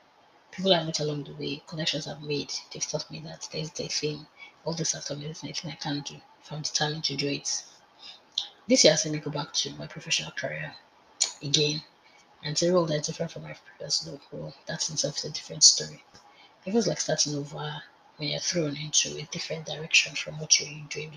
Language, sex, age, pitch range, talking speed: English, female, 20-39, 145-170 Hz, 215 wpm